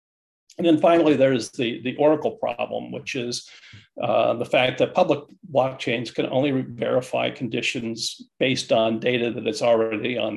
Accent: American